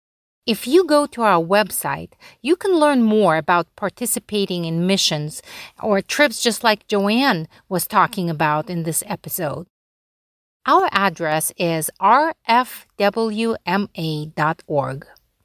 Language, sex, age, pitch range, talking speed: English, female, 40-59, 175-235 Hz, 115 wpm